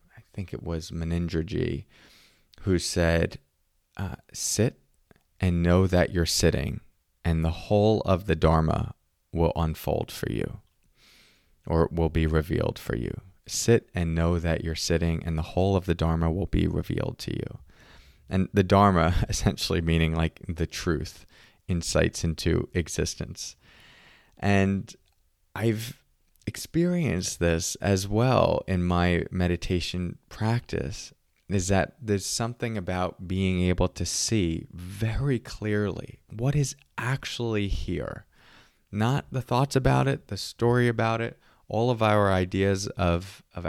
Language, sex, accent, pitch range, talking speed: English, male, American, 85-105 Hz, 135 wpm